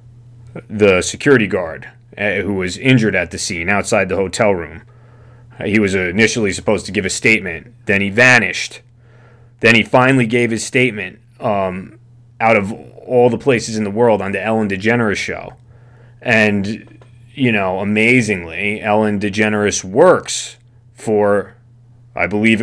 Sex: male